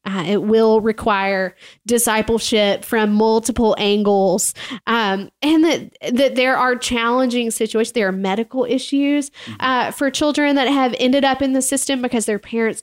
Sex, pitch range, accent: female, 205-235 Hz, American